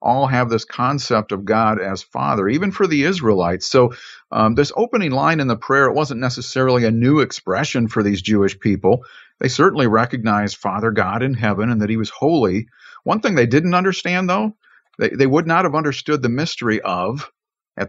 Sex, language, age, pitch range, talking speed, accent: male, English, 50-69, 110-140 Hz, 195 wpm, American